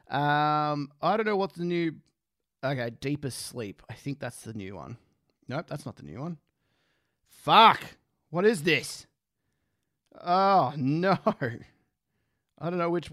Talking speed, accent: 145 wpm, Australian